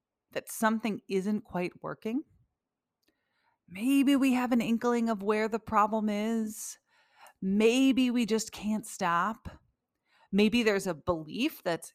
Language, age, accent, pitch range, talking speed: English, 30-49, American, 165-225 Hz, 125 wpm